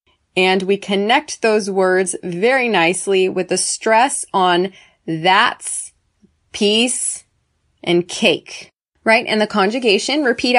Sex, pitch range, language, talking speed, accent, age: female, 195-255 Hz, English, 115 wpm, American, 20-39